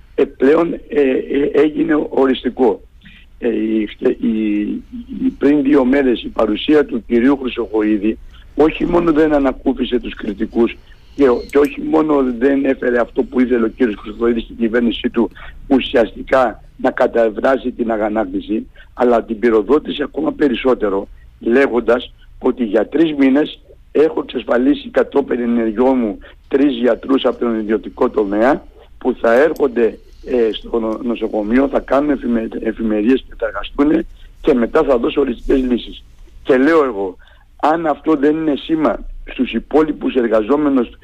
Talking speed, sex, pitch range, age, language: 125 wpm, male, 115-145 Hz, 60-79, Greek